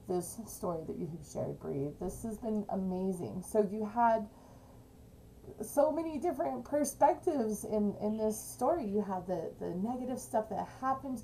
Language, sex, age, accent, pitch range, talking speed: English, female, 30-49, American, 180-220 Hz, 160 wpm